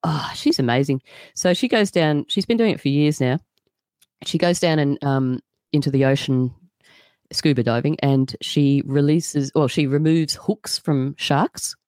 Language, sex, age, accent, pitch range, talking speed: English, female, 30-49, Australian, 135-175 Hz, 165 wpm